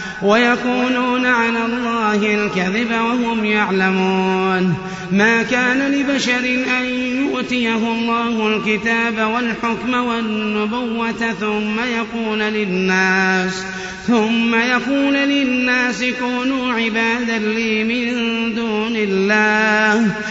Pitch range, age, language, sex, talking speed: 210-245 Hz, 30-49, Arabic, male, 80 wpm